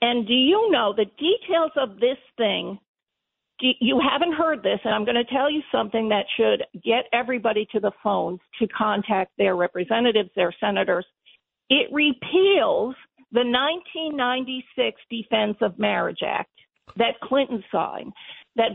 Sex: female